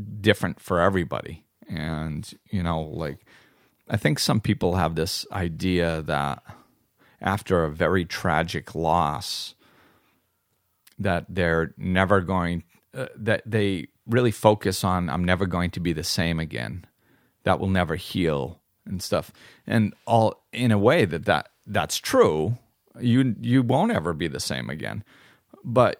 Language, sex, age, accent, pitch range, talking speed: English, male, 40-59, American, 85-110 Hz, 145 wpm